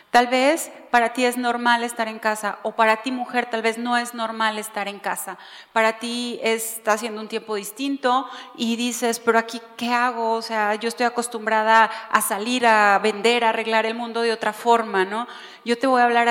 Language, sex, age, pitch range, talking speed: Spanish, female, 30-49, 220-260 Hz, 205 wpm